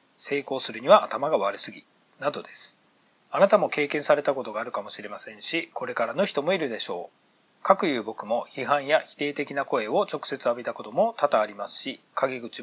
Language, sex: Japanese, male